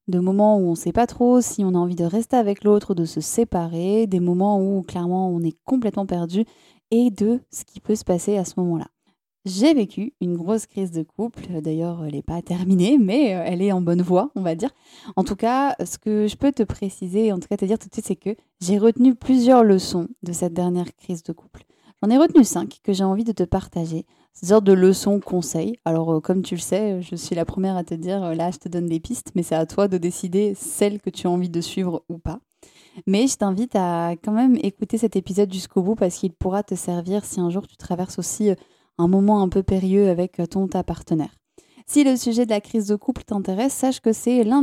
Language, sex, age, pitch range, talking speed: French, female, 20-39, 180-220 Hz, 240 wpm